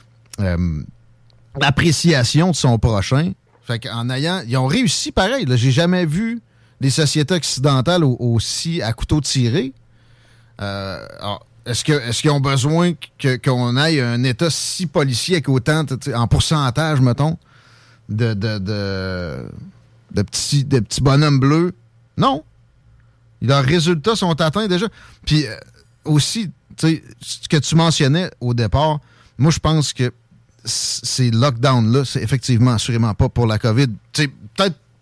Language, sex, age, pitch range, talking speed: French, male, 30-49, 115-155 Hz, 145 wpm